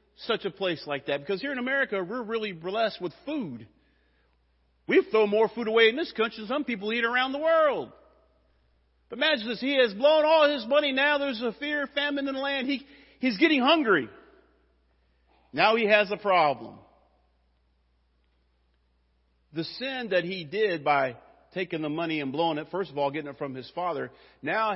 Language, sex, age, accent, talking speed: English, male, 50-69, American, 185 wpm